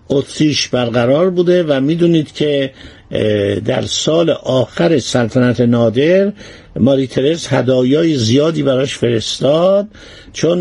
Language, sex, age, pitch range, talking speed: Persian, male, 50-69, 125-170 Hz, 95 wpm